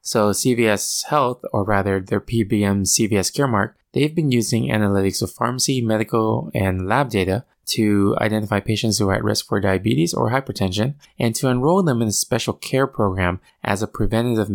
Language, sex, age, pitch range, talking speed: English, male, 20-39, 100-125 Hz, 175 wpm